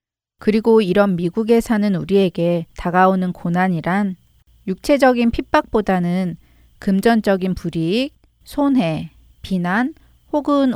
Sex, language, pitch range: female, Korean, 175-230 Hz